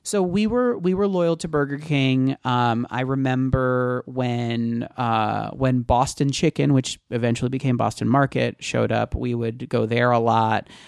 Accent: American